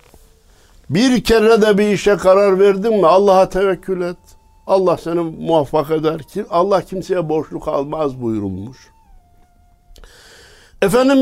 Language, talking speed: Turkish, 110 wpm